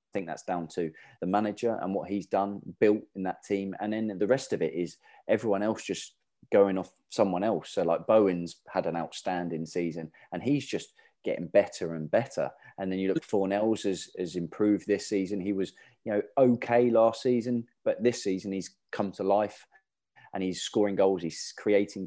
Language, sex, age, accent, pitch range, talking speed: English, male, 20-39, British, 95-110 Hz, 200 wpm